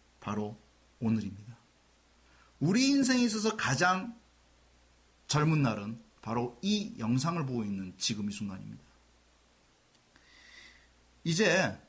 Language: Korean